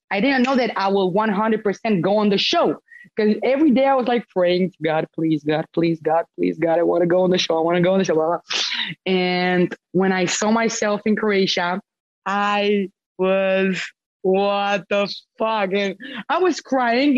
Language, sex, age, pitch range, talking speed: English, female, 20-39, 180-235 Hz, 205 wpm